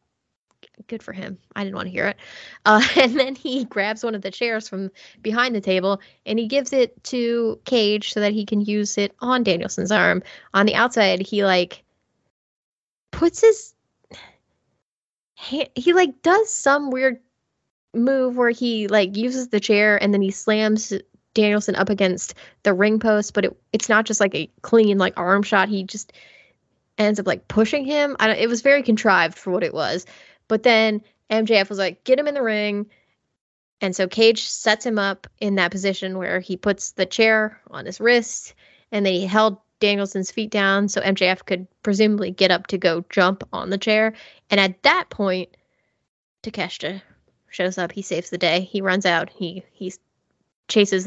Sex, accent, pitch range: female, American, 190-225 Hz